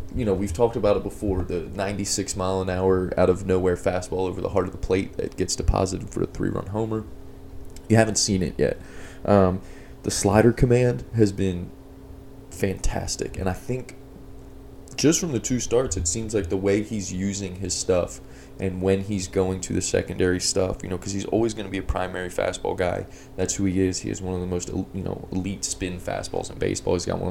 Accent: American